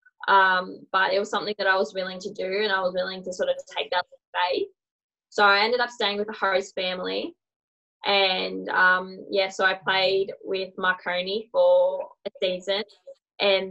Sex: female